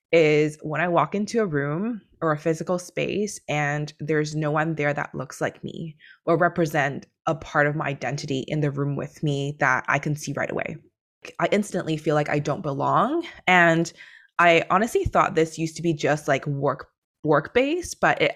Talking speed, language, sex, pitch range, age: 195 wpm, English, female, 145-175 Hz, 20-39